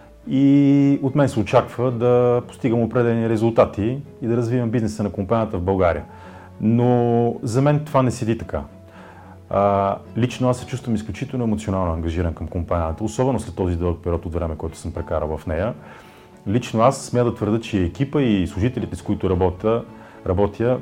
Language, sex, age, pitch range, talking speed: Bulgarian, male, 30-49, 95-115 Hz, 165 wpm